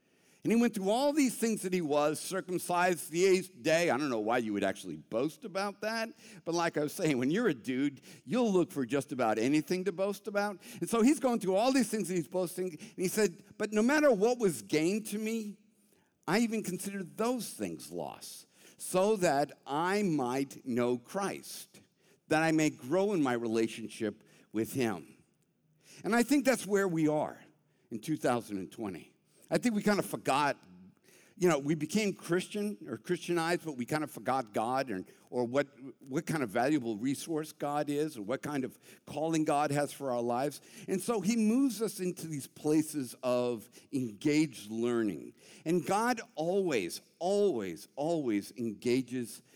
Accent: American